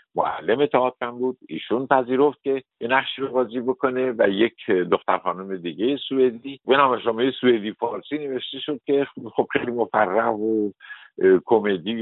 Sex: male